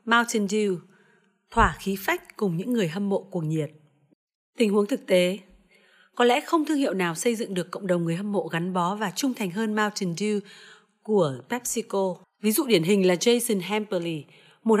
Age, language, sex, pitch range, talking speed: 30-49, Vietnamese, female, 185-235 Hz, 195 wpm